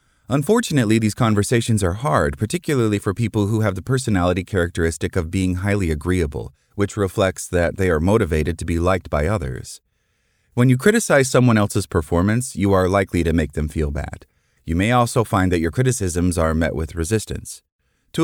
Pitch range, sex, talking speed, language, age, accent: 85-125 Hz, male, 180 wpm, English, 30-49, American